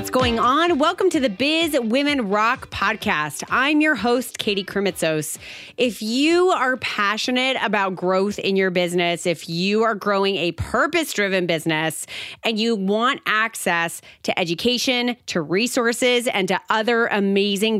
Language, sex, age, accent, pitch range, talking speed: English, female, 30-49, American, 190-270 Hz, 145 wpm